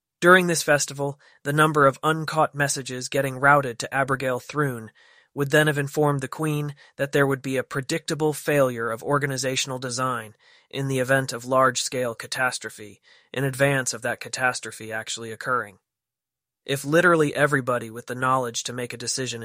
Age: 20-39